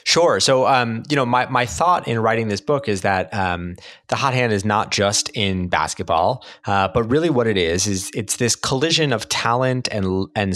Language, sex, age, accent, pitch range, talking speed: English, male, 30-49, American, 100-125 Hz, 210 wpm